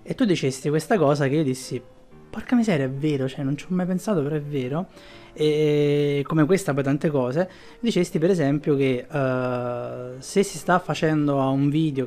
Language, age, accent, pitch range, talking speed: Italian, 20-39, native, 135-165 Hz, 190 wpm